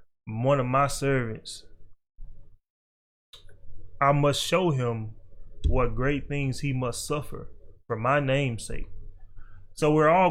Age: 20-39